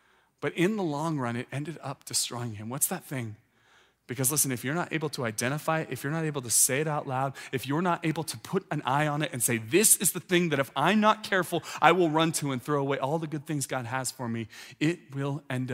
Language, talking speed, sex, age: English, 265 wpm, male, 30-49